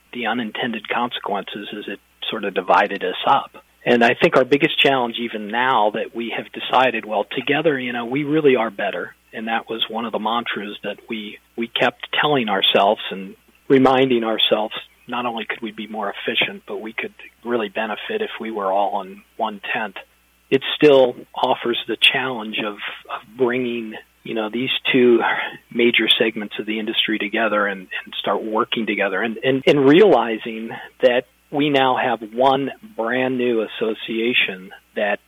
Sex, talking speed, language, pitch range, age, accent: male, 170 wpm, English, 110-130 Hz, 40-59, American